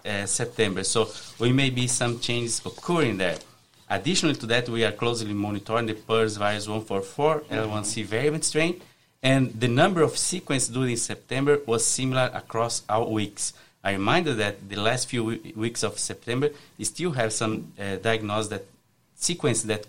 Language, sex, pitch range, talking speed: English, male, 110-130 Hz, 165 wpm